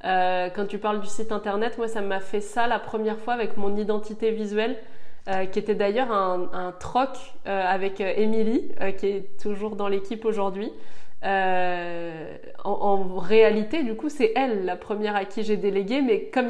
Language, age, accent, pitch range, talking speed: French, 20-39, French, 195-230 Hz, 195 wpm